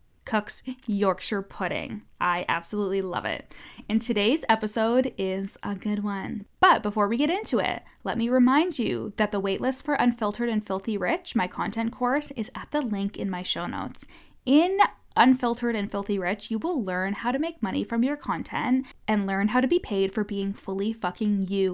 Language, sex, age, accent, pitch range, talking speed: English, female, 10-29, American, 195-250 Hz, 190 wpm